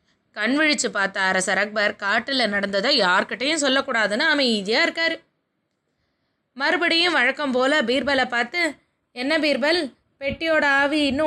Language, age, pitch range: Tamil, 20-39, 215-300 Hz